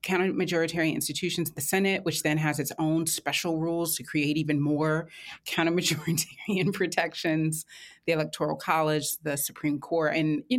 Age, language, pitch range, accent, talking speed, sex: 30-49, English, 160-190 Hz, American, 140 wpm, female